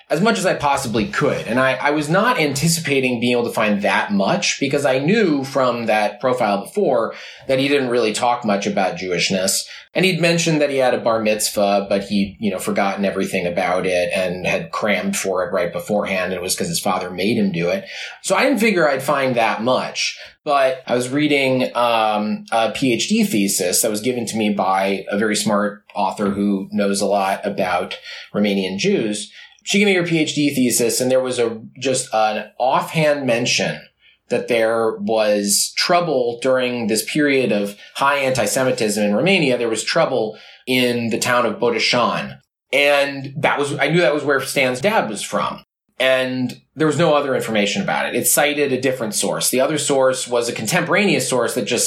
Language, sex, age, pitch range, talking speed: English, male, 30-49, 105-140 Hz, 195 wpm